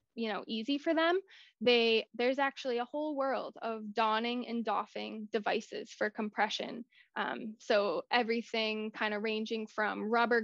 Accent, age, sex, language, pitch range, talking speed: American, 10-29, female, English, 215-245 Hz, 150 wpm